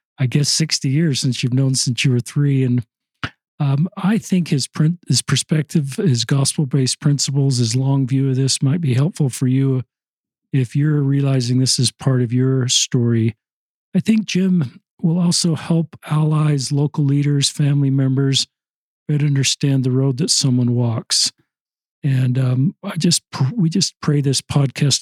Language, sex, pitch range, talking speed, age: English, male, 130-155 Hz, 165 wpm, 50-69